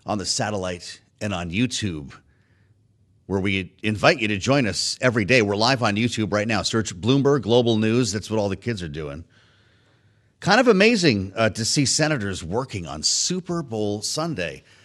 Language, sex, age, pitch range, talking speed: English, male, 40-59, 100-130 Hz, 180 wpm